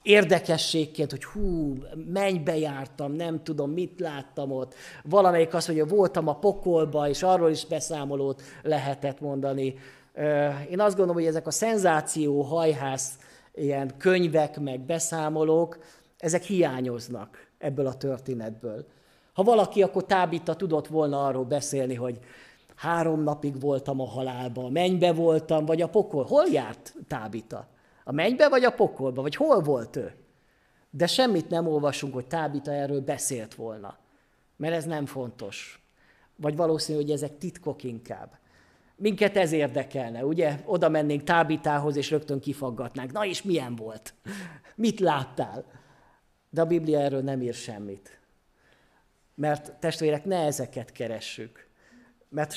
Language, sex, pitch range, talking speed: Hungarian, male, 135-170 Hz, 135 wpm